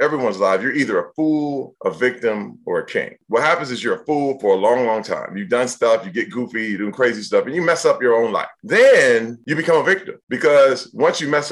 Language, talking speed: English, 250 wpm